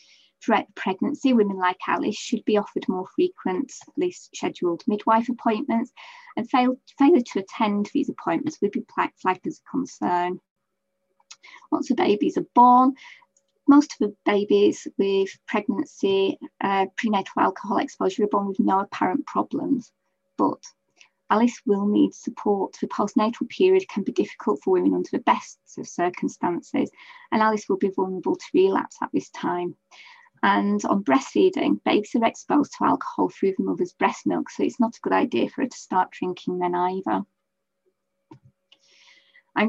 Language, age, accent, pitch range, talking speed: English, 20-39, British, 190-310 Hz, 155 wpm